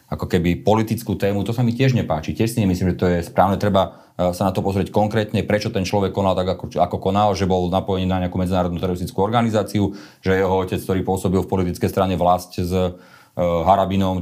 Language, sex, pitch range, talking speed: Slovak, male, 90-100 Hz, 210 wpm